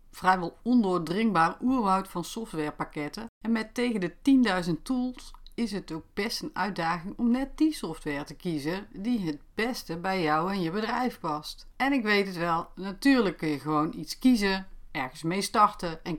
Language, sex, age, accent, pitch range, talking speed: Dutch, female, 40-59, Dutch, 165-235 Hz, 175 wpm